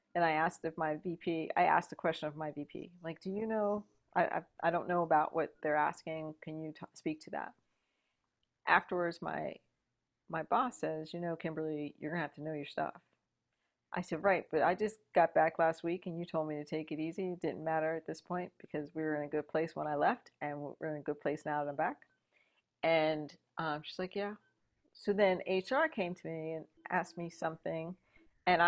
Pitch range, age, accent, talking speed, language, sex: 155-190 Hz, 40-59, American, 225 wpm, English, female